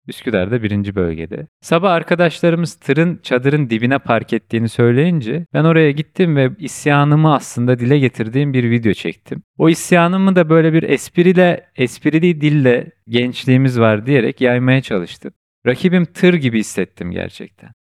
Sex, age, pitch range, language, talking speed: male, 40-59, 125-165 Hz, Turkish, 135 wpm